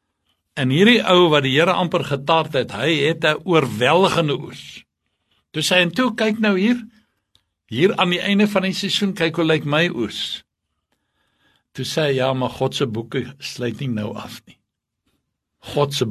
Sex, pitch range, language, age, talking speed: male, 130-175 Hz, English, 60-79, 170 wpm